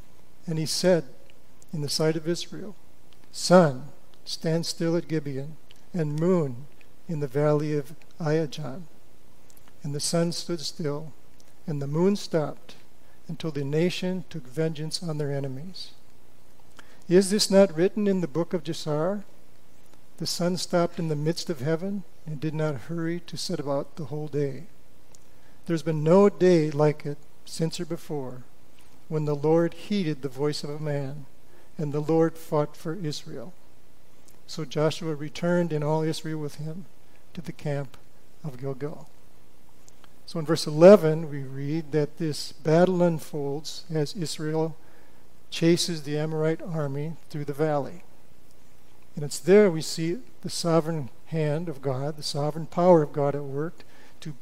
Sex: male